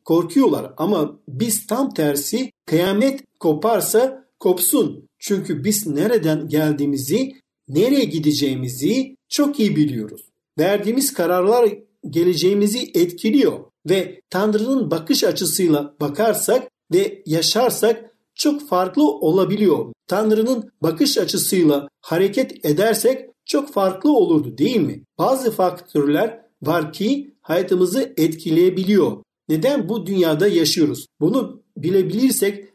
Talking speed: 95 wpm